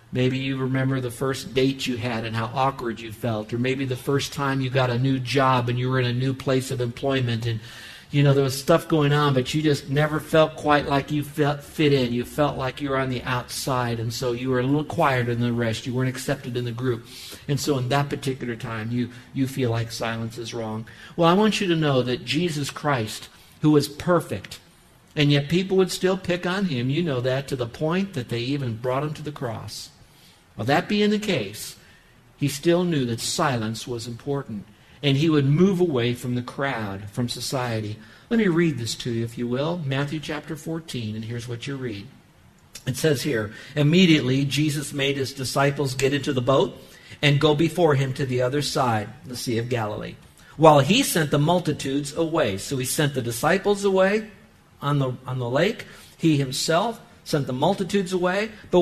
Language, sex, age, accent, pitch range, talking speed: English, male, 50-69, American, 125-155 Hz, 210 wpm